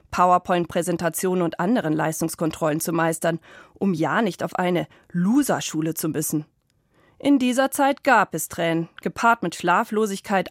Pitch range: 165-220 Hz